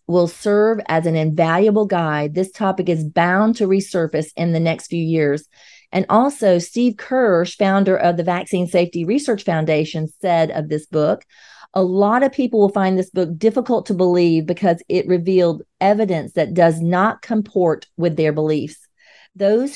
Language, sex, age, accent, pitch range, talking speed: English, female, 40-59, American, 170-210 Hz, 165 wpm